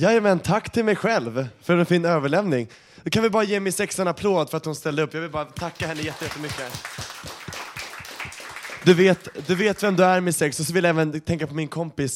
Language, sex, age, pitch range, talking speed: Swedish, male, 20-39, 130-160 Hz, 250 wpm